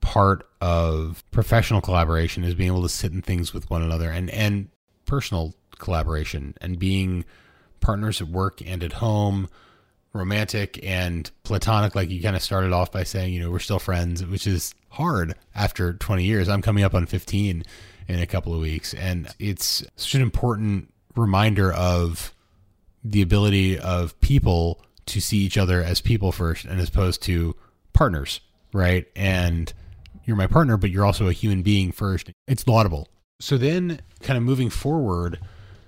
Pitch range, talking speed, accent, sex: 90-105 Hz, 170 wpm, American, male